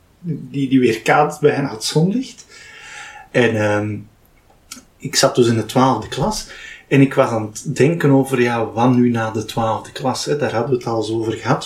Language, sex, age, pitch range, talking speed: Dutch, male, 30-49, 120-155 Hz, 195 wpm